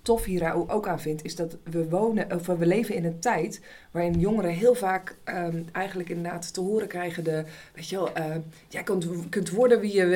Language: Dutch